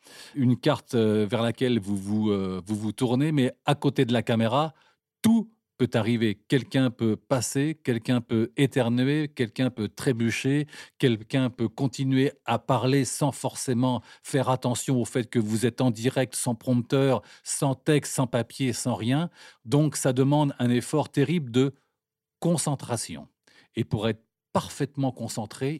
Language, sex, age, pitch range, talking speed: French, male, 40-59, 115-145 Hz, 150 wpm